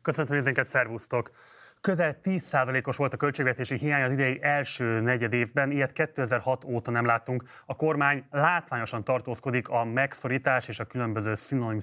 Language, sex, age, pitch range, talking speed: Hungarian, male, 20-39, 115-140 Hz, 150 wpm